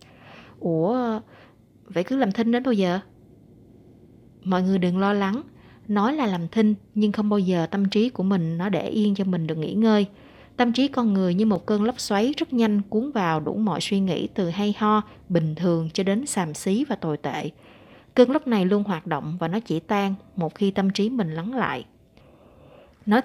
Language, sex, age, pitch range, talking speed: Vietnamese, female, 20-39, 170-225 Hz, 205 wpm